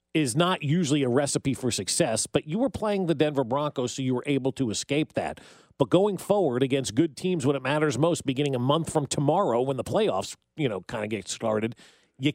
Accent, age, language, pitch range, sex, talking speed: American, 40-59, English, 130-165 Hz, male, 225 wpm